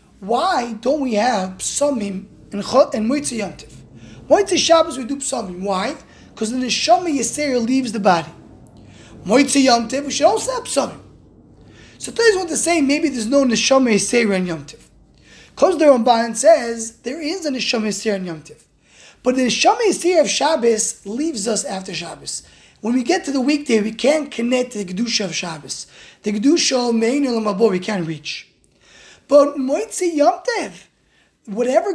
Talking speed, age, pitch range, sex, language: 160 wpm, 20-39, 220-310 Hz, male, English